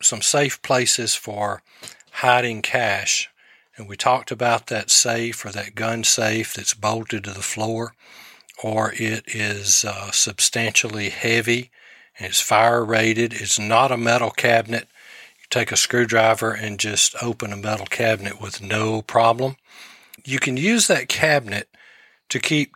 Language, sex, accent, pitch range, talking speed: English, male, American, 100-115 Hz, 150 wpm